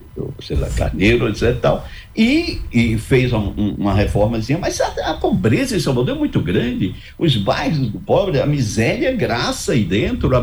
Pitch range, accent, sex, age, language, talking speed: 95-135 Hz, Brazilian, male, 60-79, Portuguese, 190 wpm